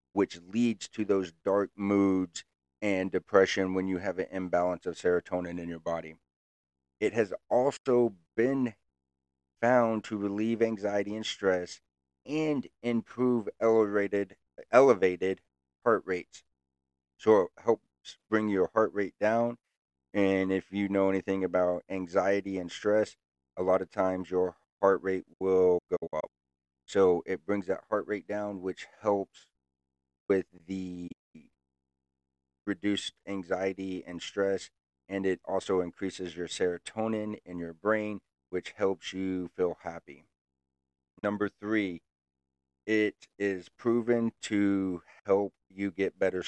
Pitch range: 80-100 Hz